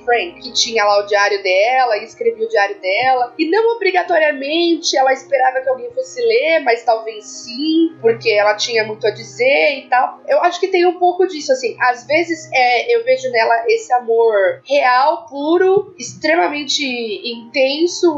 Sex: female